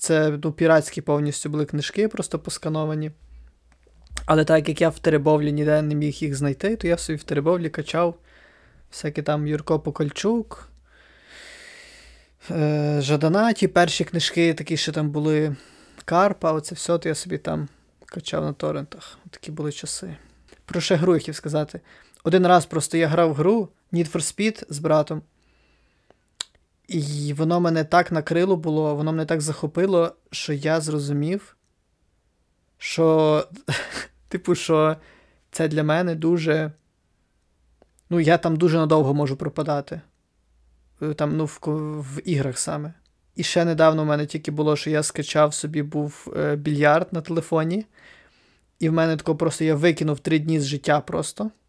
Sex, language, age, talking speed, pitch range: male, Ukrainian, 20-39, 145 wpm, 150-170 Hz